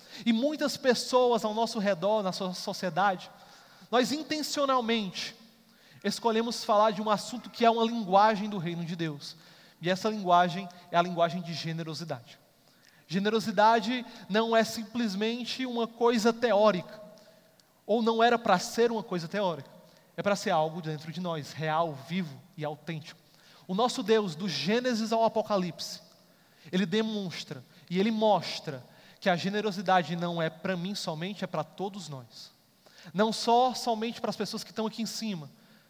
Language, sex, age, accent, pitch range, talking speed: Portuguese, male, 30-49, Brazilian, 175-225 Hz, 155 wpm